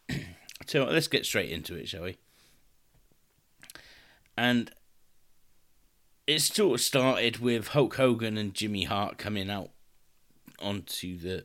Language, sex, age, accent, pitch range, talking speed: English, male, 30-49, British, 95-120 Hz, 120 wpm